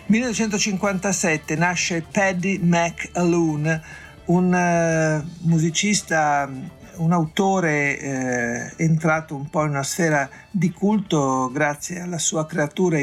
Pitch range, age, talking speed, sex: 145-175 Hz, 50-69, 95 wpm, male